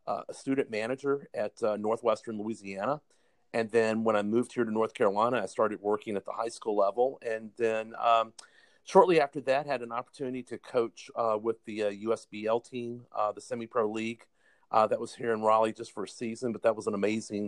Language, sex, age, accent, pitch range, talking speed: English, male, 40-59, American, 110-125 Hz, 210 wpm